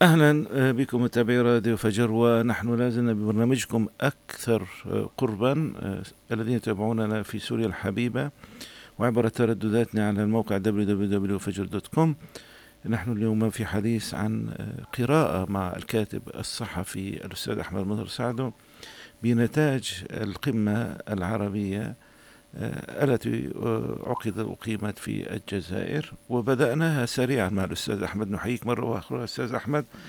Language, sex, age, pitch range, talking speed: Arabic, male, 50-69, 105-120 Hz, 100 wpm